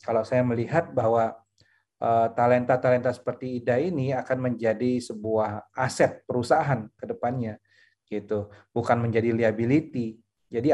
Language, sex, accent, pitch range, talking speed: Indonesian, male, native, 110-145 Hz, 110 wpm